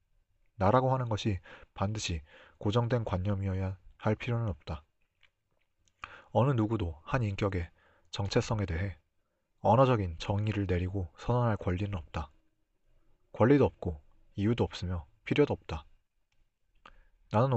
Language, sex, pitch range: Korean, male, 90-115 Hz